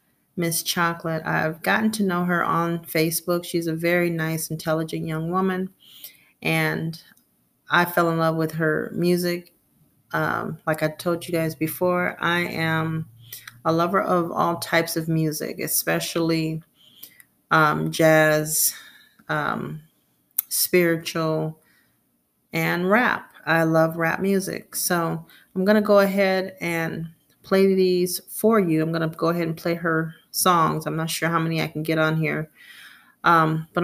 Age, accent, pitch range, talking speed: 40-59, American, 160-180 Hz, 145 wpm